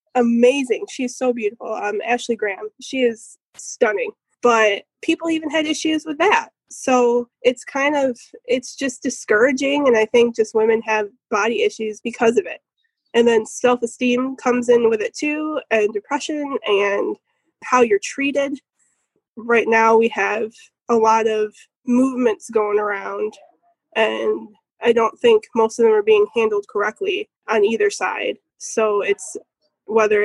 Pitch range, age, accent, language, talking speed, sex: 220-305 Hz, 10-29, American, English, 150 wpm, female